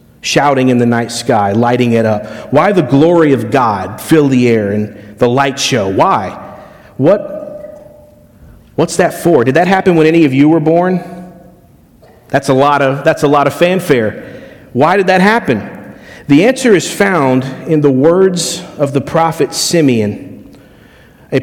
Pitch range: 130-180 Hz